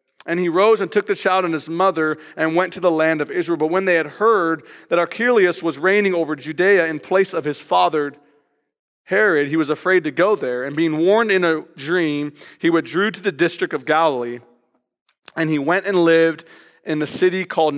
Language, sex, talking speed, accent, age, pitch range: English, male, 210 wpm, American, 40-59, 140-170 Hz